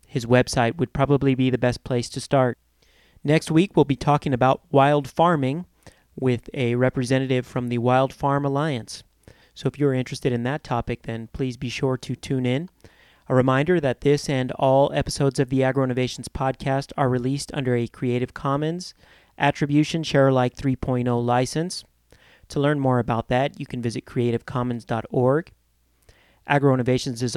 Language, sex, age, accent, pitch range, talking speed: English, male, 30-49, American, 125-145 Hz, 160 wpm